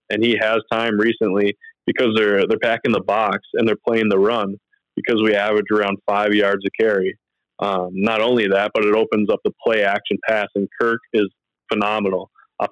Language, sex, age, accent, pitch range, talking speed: English, male, 20-39, American, 100-115 Hz, 195 wpm